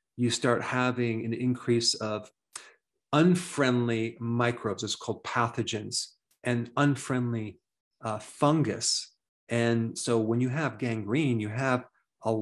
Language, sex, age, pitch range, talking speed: English, male, 40-59, 105-125 Hz, 115 wpm